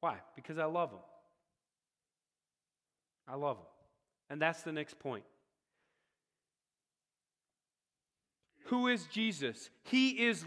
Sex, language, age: male, English, 40-59